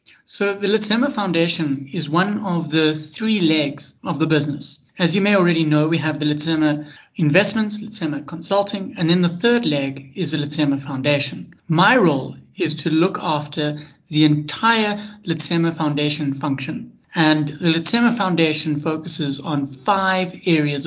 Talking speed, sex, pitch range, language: 150 wpm, male, 155-215 Hz, English